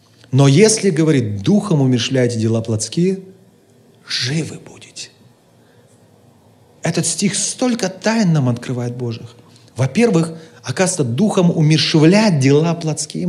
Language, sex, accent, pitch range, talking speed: Russian, male, native, 130-195 Hz, 100 wpm